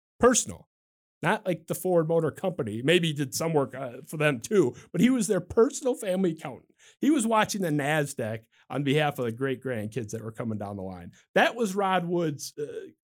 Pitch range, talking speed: 140-180 Hz, 205 wpm